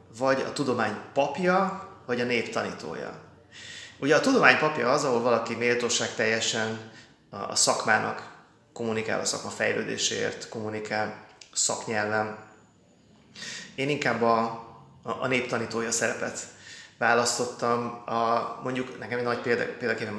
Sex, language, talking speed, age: male, Hungarian, 105 wpm, 30-49